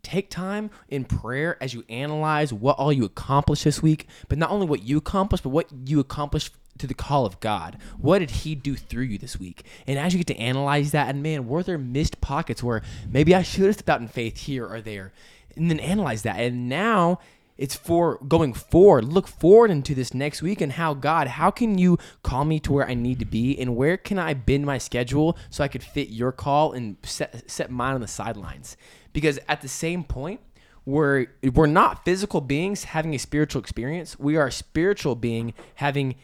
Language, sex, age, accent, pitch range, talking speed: English, male, 20-39, American, 130-165 Hz, 215 wpm